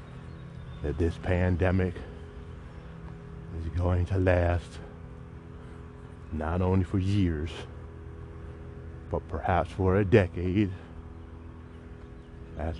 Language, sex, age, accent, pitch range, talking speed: English, male, 30-49, American, 80-95 Hz, 80 wpm